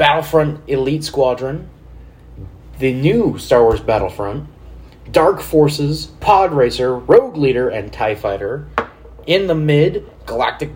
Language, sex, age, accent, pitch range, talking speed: English, male, 30-49, American, 115-160 Hz, 115 wpm